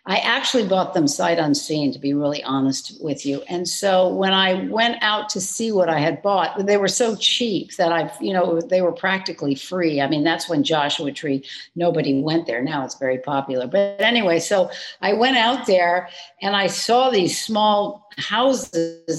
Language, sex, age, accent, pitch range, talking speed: English, female, 60-79, American, 175-215 Hz, 195 wpm